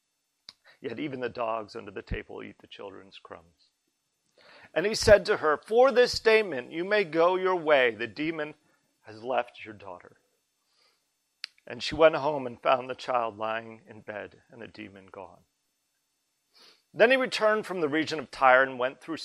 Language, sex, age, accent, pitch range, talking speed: English, male, 40-59, American, 120-165 Hz, 175 wpm